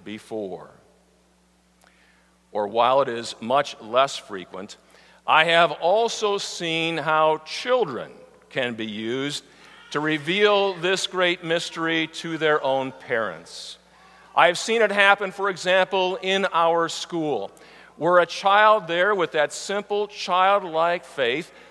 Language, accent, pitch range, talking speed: English, American, 145-195 Hz, 120 wpm